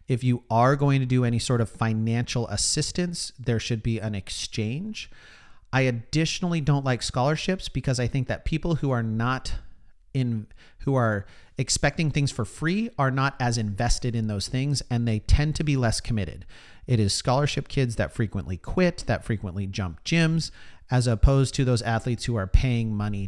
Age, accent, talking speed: 40-59, American, 180 wpm